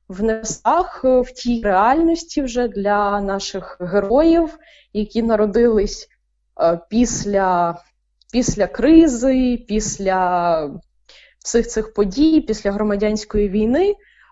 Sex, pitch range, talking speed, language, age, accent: female, 200-250 Hz, 90 wpm, Ukrainian, 20-39, native